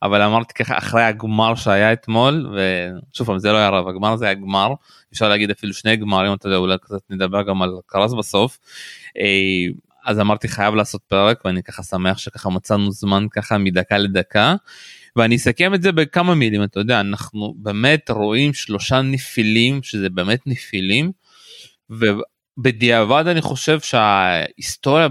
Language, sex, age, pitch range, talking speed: Hebrew, male, 20-39, 105-130 Hz, 155 wpm